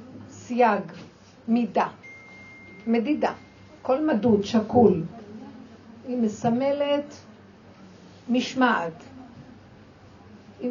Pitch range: 205-255 Hz